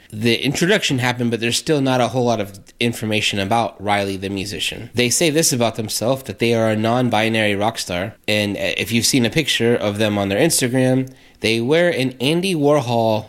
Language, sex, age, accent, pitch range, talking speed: English, male, 20-39, American, 100-125 Hz, 200 wpm